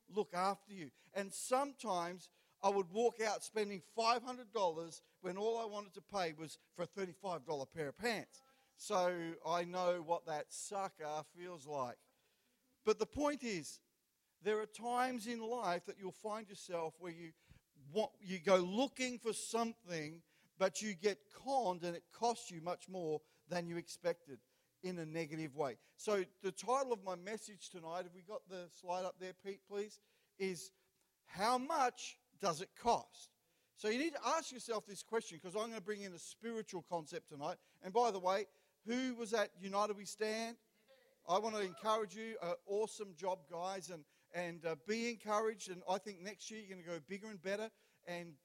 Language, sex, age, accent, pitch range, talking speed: English, male, 50-69, Australian, 175-220 Hz, 180 wpm